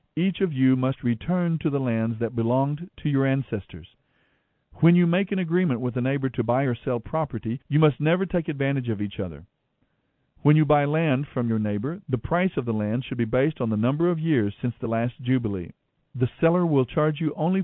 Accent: American